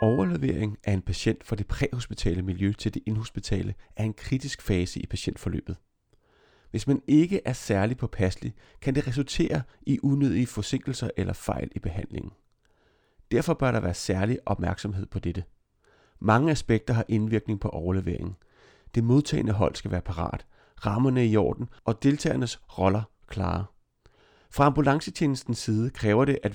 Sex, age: male, 30-49